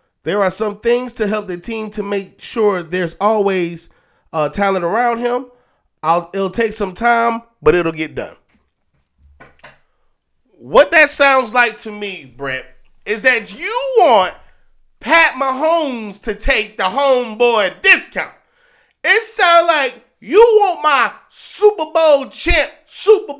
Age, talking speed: 20-39, 135 wpm